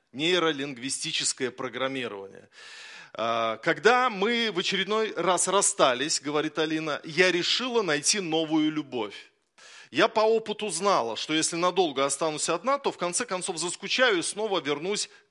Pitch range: 145-200 Hz